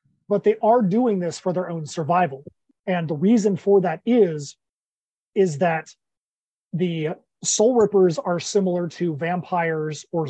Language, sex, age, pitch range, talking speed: English, male, 30-49, 165-205 Hz, 145 wpm